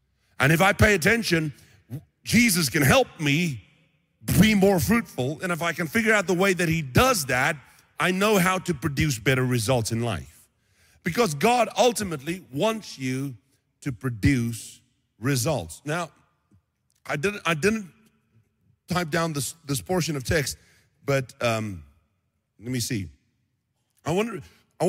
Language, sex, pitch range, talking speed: English, male, 110-170 Hz, 140 wpm